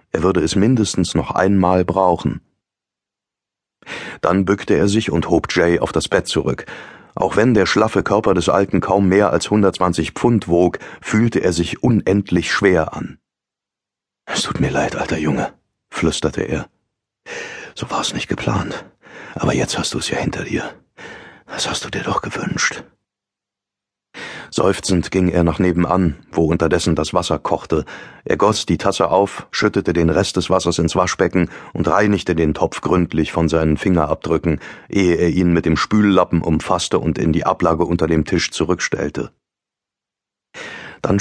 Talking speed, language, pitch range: 160 wpm, German, 85-100 Hz